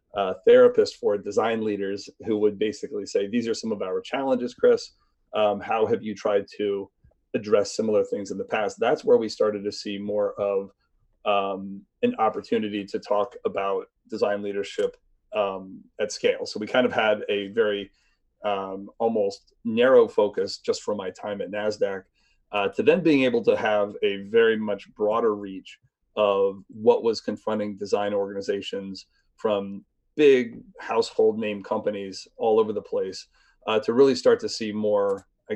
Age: 30-49